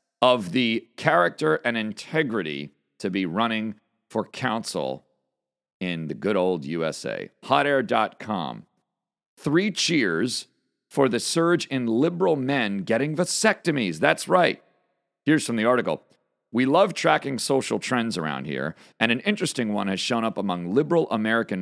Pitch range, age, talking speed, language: 110-170 Hz, 40-59, 135 wpm, English